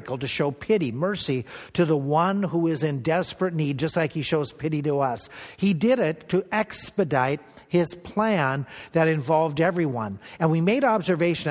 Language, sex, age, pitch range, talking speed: English, male, 50-69, 150-190 Hz, 170 wpm